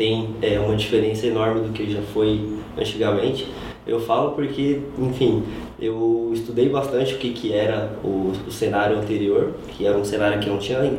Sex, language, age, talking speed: male, Portuguese, 20-39, 170 wpm